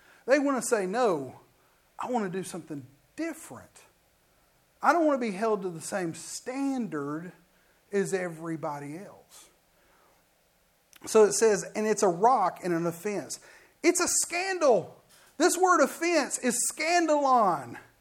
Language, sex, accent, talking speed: English, male, American, 140 wpm